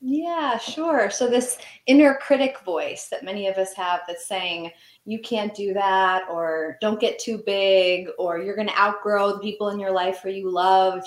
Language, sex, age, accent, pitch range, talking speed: English, female, 20-39, American, 185-255 Hz, 200 wpm